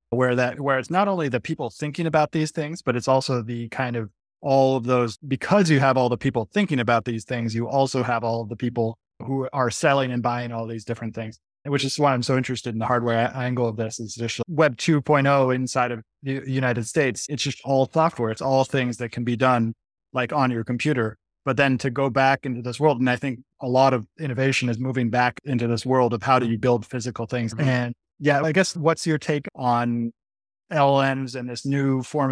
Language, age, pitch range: English, 30-49, 120-140 Hz